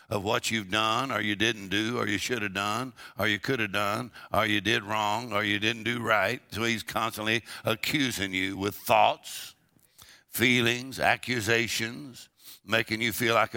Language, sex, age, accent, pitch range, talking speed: English, male, 60-79, American, 105-125 Hz, 175 wpm